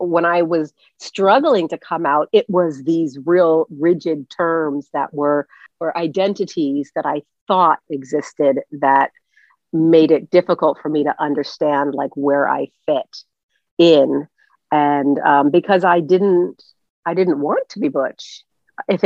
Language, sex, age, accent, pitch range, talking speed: English, female, 50-69, American, 155-195 Hz, 145 wpm